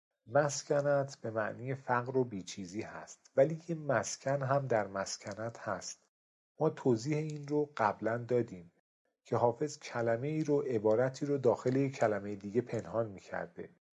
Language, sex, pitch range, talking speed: Persian, male, 105-135 Hz, 140 wpm